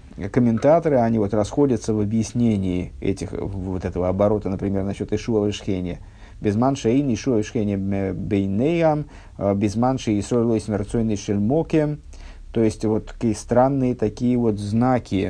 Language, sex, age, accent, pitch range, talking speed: Russian, male, 50-69, native, 100-120 Hz, 130 wpm